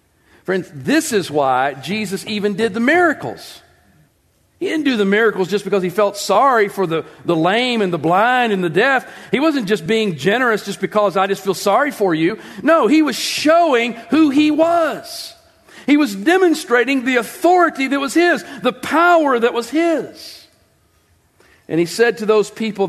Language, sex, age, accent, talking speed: English, male, 50-69, American, 180 wpm